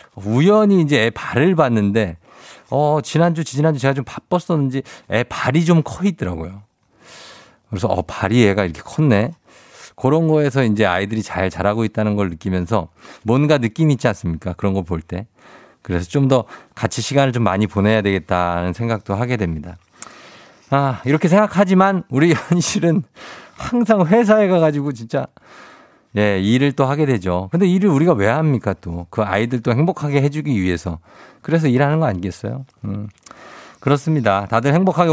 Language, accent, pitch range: Korean, native, 105-165 Hz